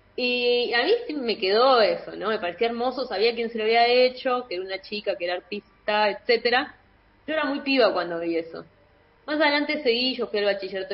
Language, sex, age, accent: Spanish, female, 20-39, Argentinian